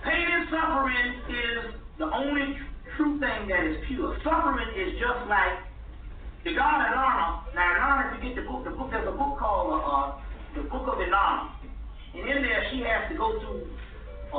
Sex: male